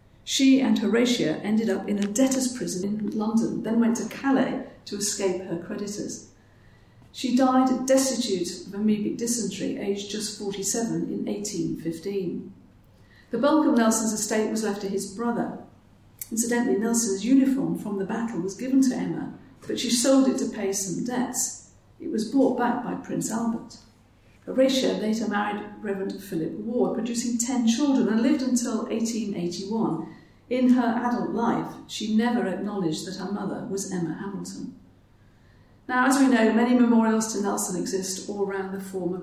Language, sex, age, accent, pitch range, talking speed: English, female, 50-69, British, 195-240 Hz, 160 wpm